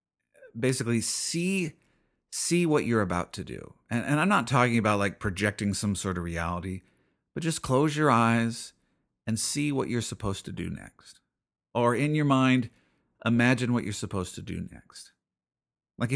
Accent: American